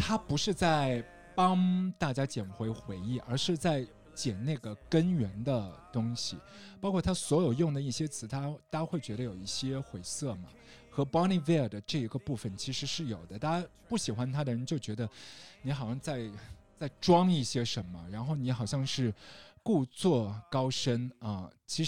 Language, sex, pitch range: Chinese, male, 115-160 Hz